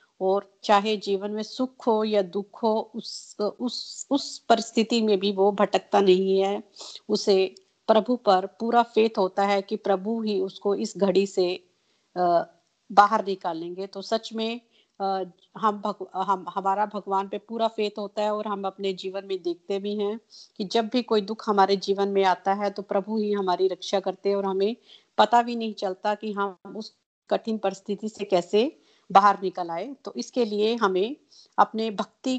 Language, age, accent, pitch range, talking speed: Hindi, 50-69, native, 195-225 Hz, 175 wpm